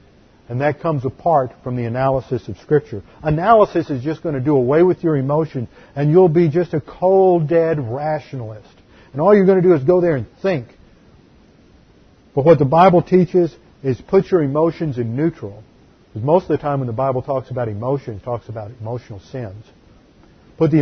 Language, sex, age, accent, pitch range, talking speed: English, male, 50-69, American, 125-165 Hz, 195 wpm